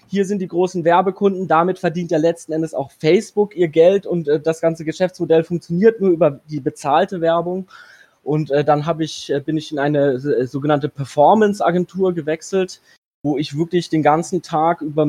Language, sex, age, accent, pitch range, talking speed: German, male, 20-39, German, 150-180 Hz, 160 wpm